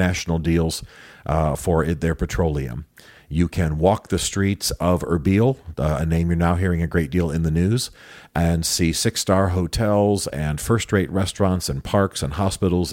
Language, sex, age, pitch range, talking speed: English, male, 40-59, 80-95 Hz, 165 wpm